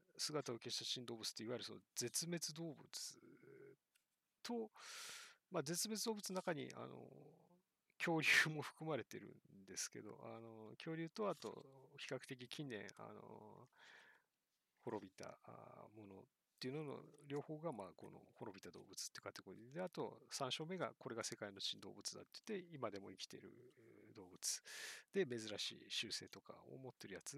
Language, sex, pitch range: Japanese, male, 120-165 Hz